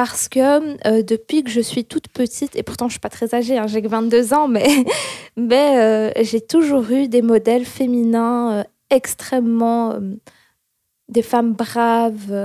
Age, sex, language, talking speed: 20-39, female, French, 180 wpm